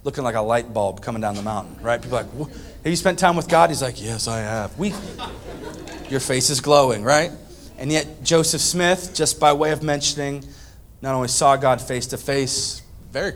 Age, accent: 30-49, American